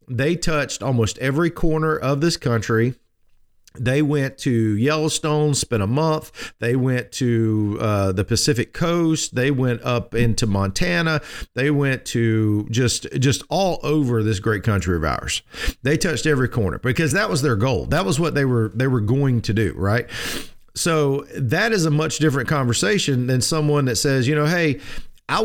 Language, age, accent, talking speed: English, 50-69, American, 175 wpm